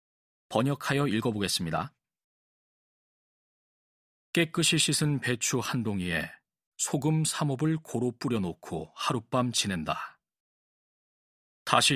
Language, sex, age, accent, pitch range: Korean, male, 40-59, native, 120-170 Hz